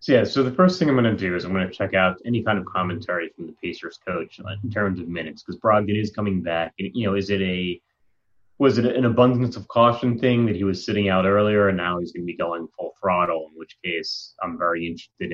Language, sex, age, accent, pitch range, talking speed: English, male, 30-49, American, 85-105 Hz, 260 wpm